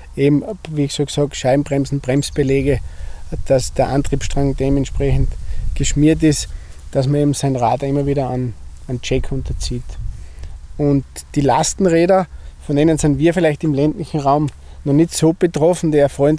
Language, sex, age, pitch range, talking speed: German, male, 20-39, 120-155 Hz, 150 wpm